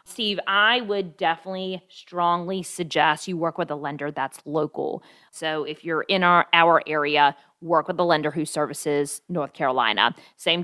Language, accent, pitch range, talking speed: English, American, 155-185 Hz, 165 wpm